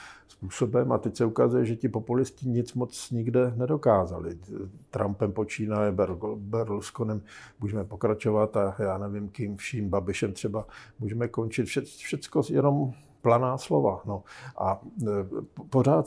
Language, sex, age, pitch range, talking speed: Slovak, male, 50-69, 100-120 Hz, 125 wpm